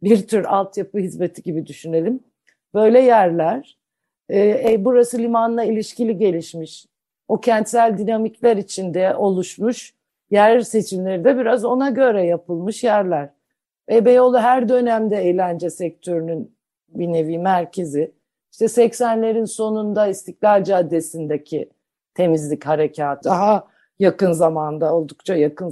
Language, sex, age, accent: Turkish, female, 50-69, native